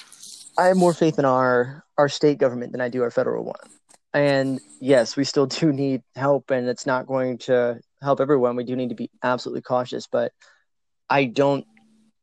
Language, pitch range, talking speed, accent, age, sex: English, 125-145 Hz, 190 wpm, American, 20-39, male